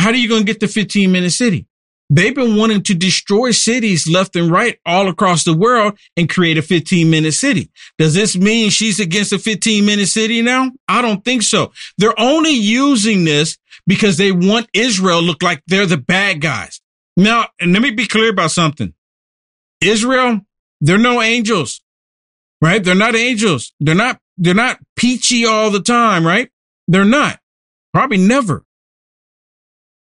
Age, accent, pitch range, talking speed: 50-69, American, 175-245 Hz, 170 wpm